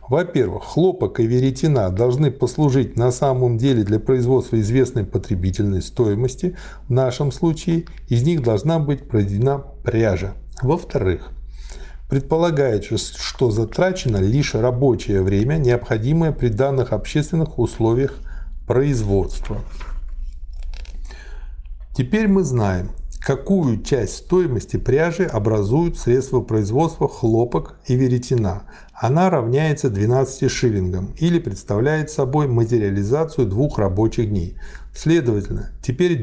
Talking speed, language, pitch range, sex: 105 wpm, Russian, 110-145 Hz, male